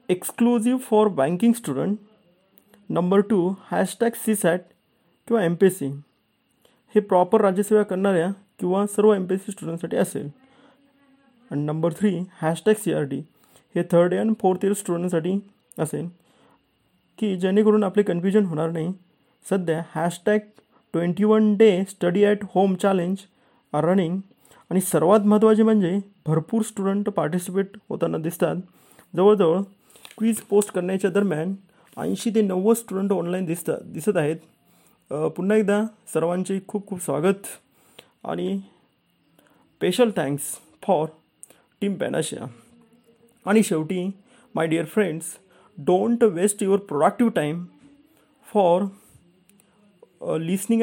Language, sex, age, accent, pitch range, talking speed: Marathi, male, 30-49, native, 175-215 Hz, 115 wpm